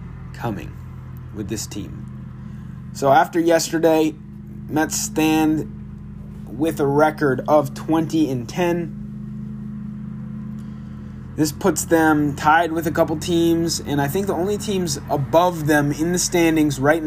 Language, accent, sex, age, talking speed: English, American, male, 20-39, 125 wpm